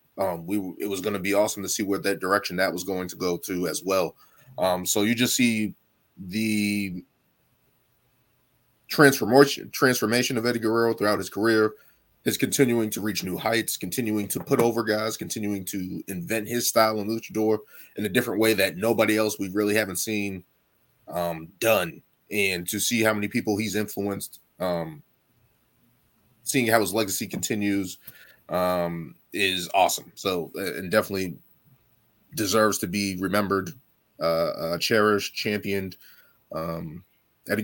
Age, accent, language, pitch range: 20-39, American, English, 95-115 Hz